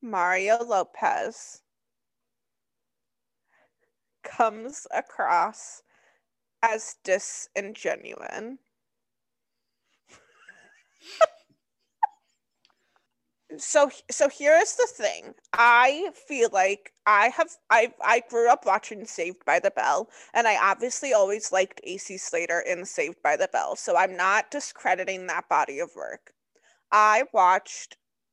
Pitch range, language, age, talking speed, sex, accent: 190-270 Hz, English, 20-39, 100 wpm, female, American